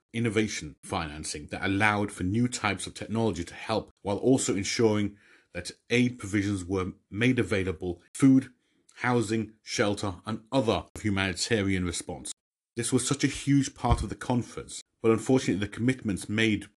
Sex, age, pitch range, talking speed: male, 40-59, 95-115 Hz, 145 wpm